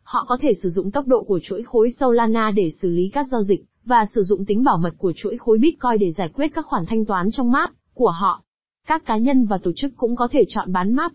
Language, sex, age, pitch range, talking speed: Vietnamese, female, 20-39, 200-250 Hz, 270 wpm